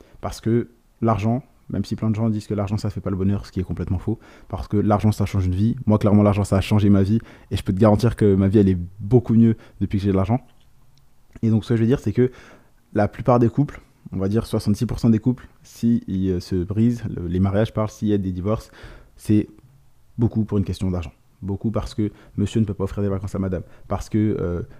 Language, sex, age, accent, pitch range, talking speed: French, male, 20-39, French, 100-115 Hz, 250 wpm